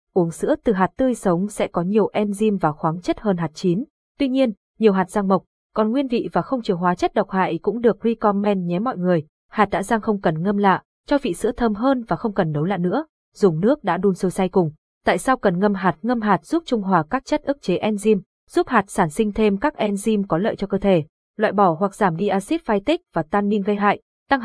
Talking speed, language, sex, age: 250 wpm, Vietnamese, female, 20-39